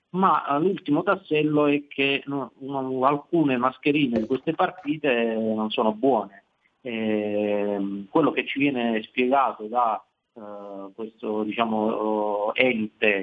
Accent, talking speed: native, 95 wpm